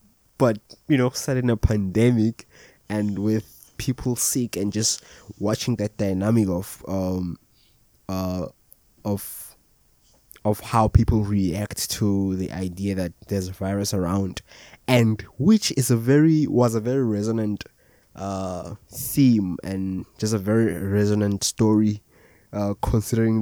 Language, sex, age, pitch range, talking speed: English, male, 20-39, 100-120 Hz, 130 wpm